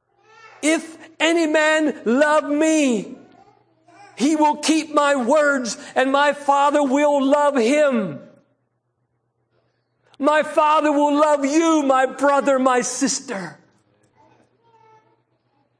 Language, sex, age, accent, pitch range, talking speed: English, male, 50-69, American, 185-285 Hz, 95 wpm